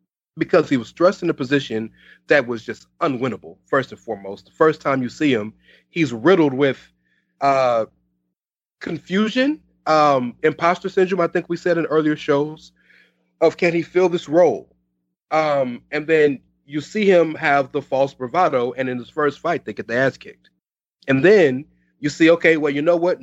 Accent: American